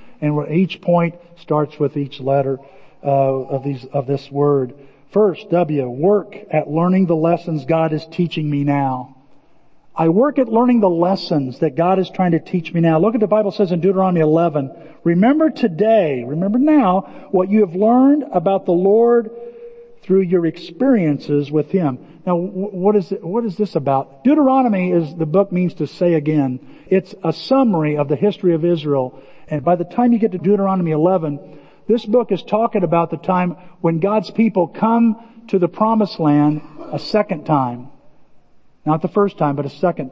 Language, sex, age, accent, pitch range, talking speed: English, male, 50-69, American, 150-210 Hz, 180 wpm